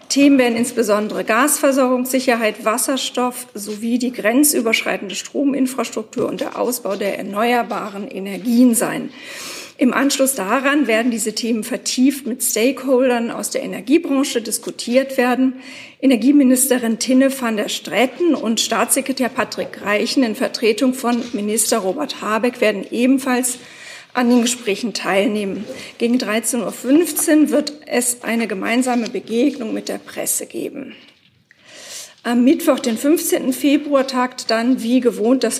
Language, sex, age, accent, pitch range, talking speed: German, female, 40-59, German, 225-270 Hz, 125 wpm